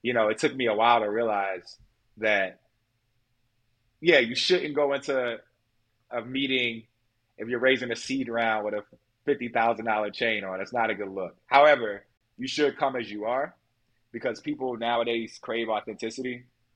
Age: 20-39